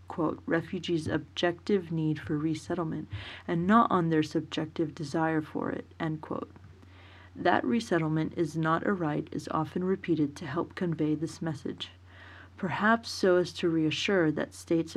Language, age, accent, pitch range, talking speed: English, 30-49, American, 155-175 Hz, 150 wpm